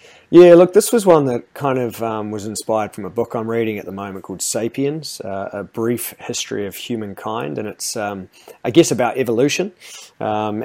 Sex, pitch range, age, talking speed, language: male, 105-125 Hz, 30-49, 195 wpm, English